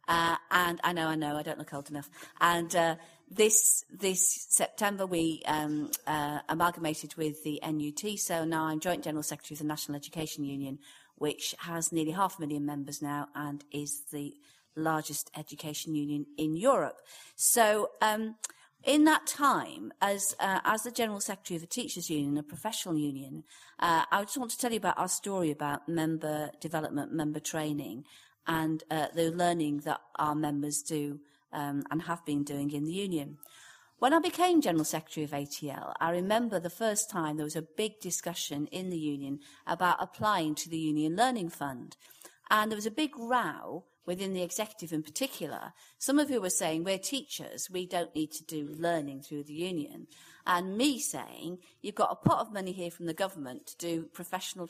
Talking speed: 185 wpm